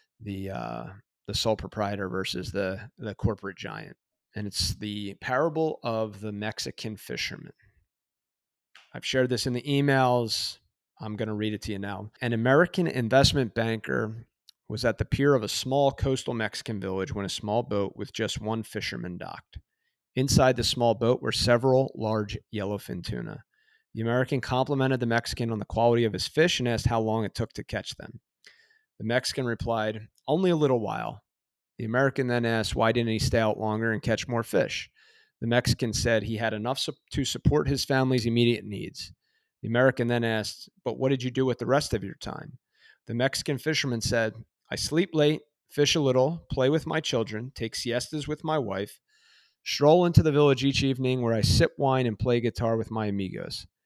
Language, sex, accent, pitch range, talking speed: English, male, American, 110-135 Hz, 185 wpm